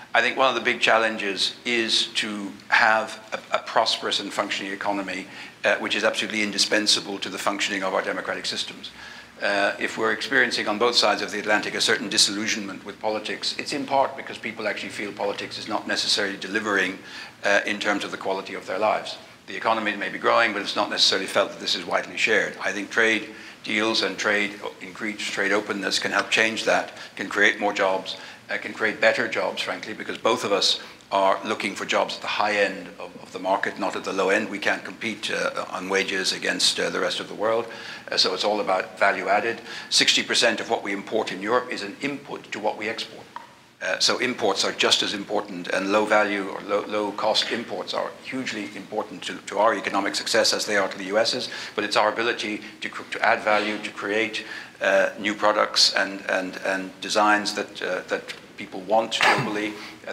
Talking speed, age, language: 210 wpm, 60-79, English